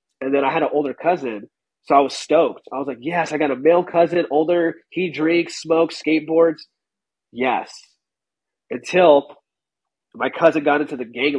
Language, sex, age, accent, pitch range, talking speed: English, male, 30-49, American, 135-165 Hz, 175 wpm